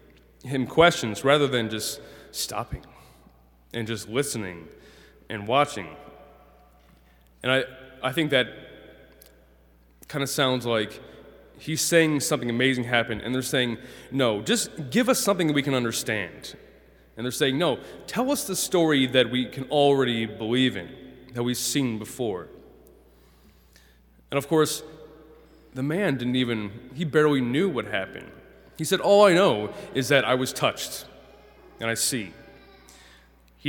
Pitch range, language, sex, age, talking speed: 115-150 Hz, English, male, 20-39, 145 wpm